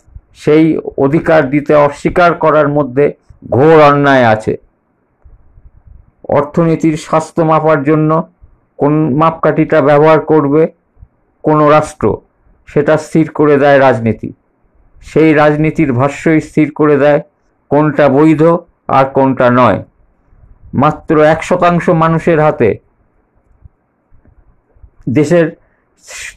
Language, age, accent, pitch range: Bengali, 50-69, native, 140-155 Hz